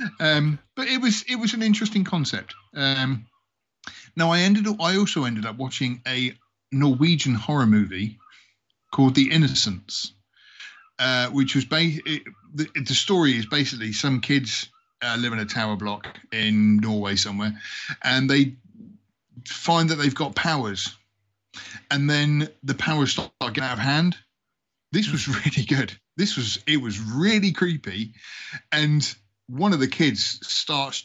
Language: English